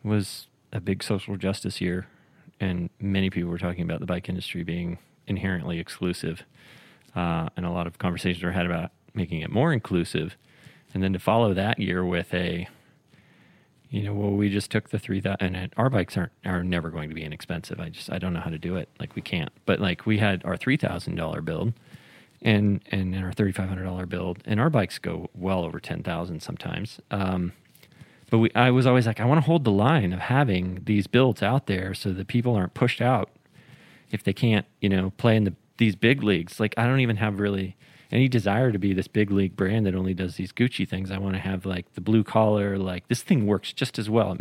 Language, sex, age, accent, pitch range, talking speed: English, male, 30-49, American, 90-115 Hz, 220 wpm